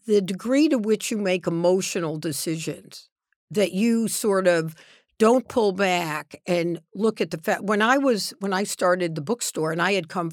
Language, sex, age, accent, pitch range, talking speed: English, female, 60-79, American, 170-220 Hz, 185 wpm